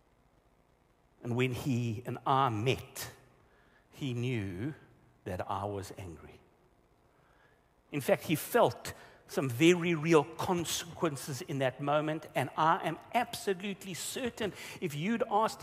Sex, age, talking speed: male, 60-79, 120 wpm